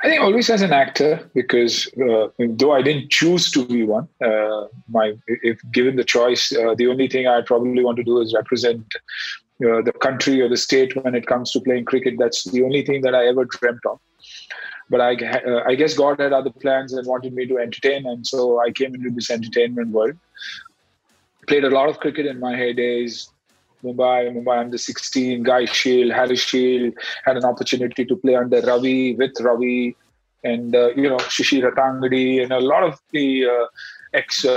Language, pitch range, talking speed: Tamil, 120-130 Hz, 200 wpm